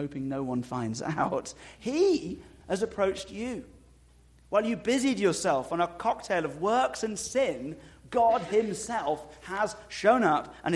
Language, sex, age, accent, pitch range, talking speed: English, male, 30-49, British, 120-175 Hz, 145 wpm